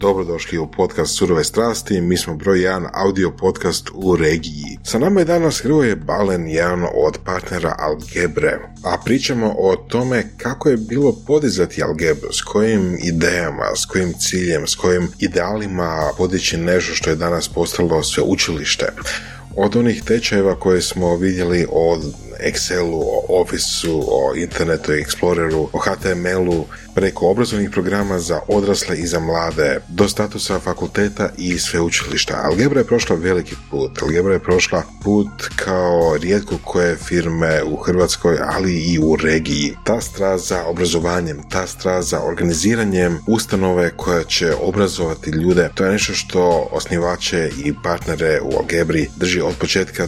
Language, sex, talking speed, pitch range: Croatian, male, 150 wpm, 85-100 Hz